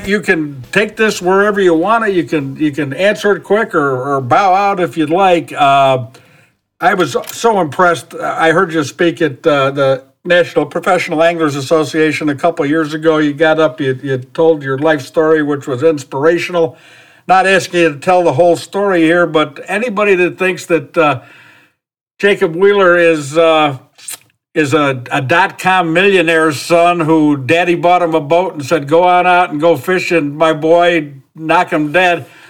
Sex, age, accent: male, 60-79, American